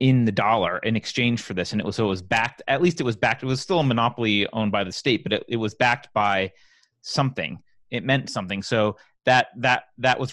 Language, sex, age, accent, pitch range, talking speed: English, male, 30-49, American, 110-135 Hz, 250 wpm